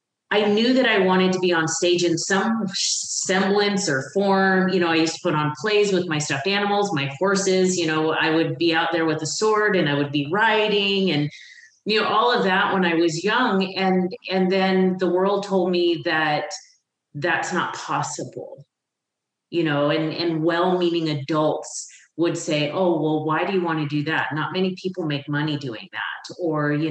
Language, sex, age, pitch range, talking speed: English, female, 30-49, 160-190 Hz, 200 wpm